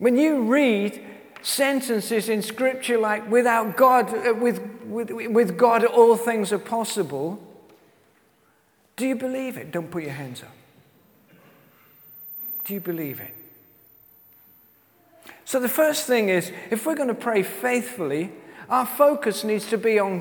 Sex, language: male, English